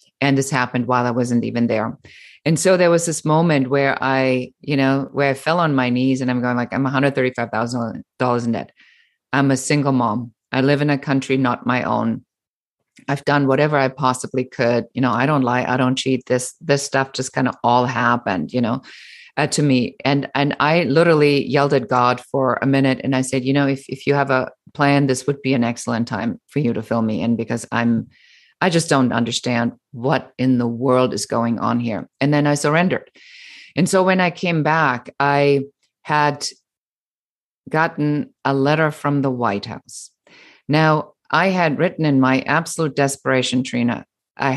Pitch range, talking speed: 125-150 Hz, 200 wpm